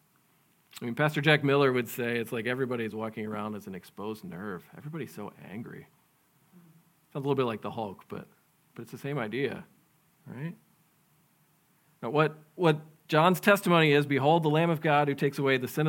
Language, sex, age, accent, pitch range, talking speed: English, male, 40-59, American, 125-155 Hz, 190 wpm